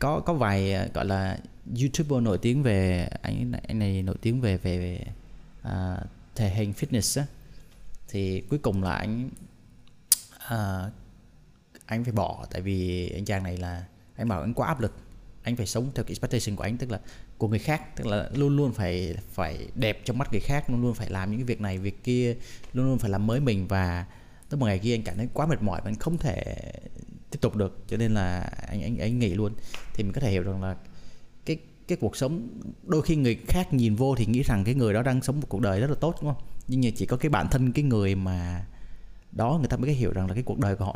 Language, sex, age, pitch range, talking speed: Vietnamese, male, 20-39, 95-130 Hz, 240 wpm